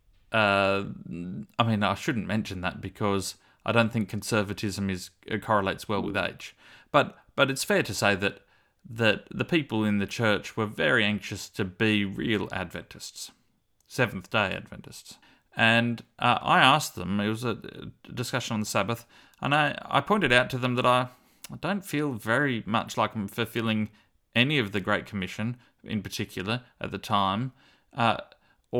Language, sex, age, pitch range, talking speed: English, male, 30-49, 100-115 Hz, 165 wpm